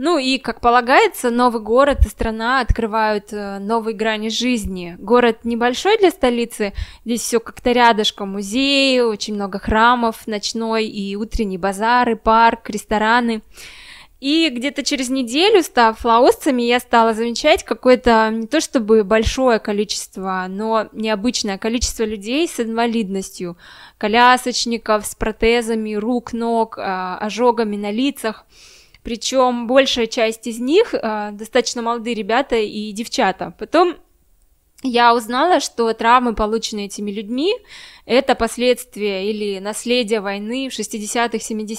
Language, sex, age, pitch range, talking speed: Russian, female, 10-29, 215-250 Hz, 120 wpm